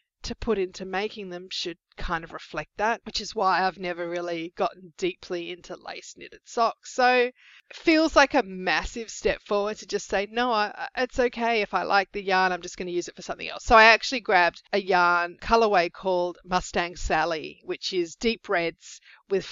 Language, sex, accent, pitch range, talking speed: English, female, Australian, 175-210 Hz, 200 wpm